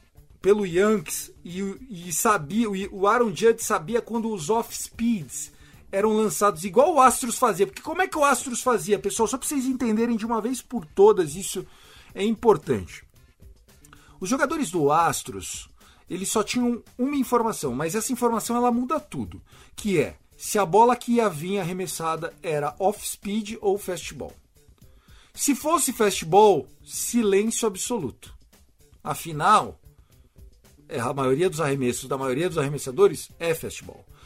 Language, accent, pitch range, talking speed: Portuguese, Brazilian, 180-250 Hz, 150 wpm